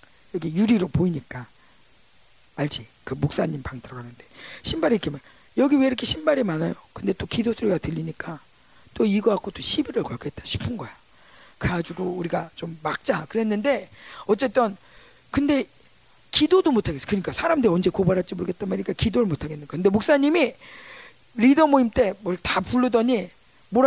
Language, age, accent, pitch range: Korean, 40-59, native, 185-295 Hz